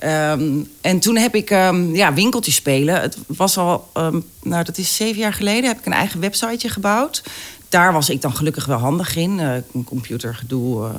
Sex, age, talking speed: female, 40-59, 170 wpm